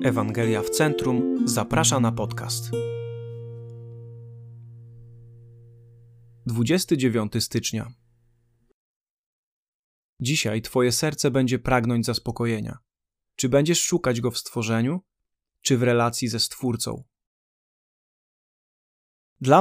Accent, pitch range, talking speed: native, 115-140 Hz, 80 wpm